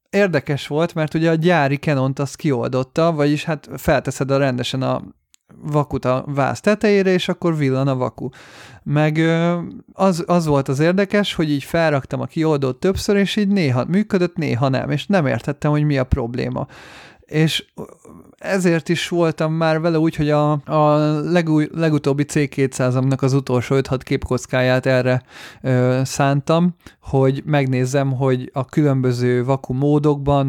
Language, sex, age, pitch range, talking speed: Hungarian, male, 30-49, 130-160 Hz, 150 wpm